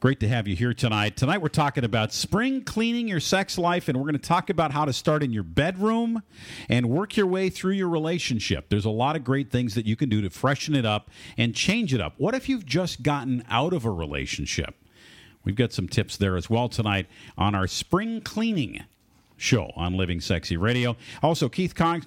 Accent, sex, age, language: American, male, 50-69, English